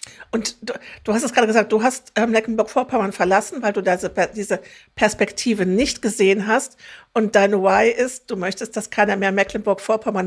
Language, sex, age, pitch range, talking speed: German, female, 50-69, 195-225 Hz, 170 wpm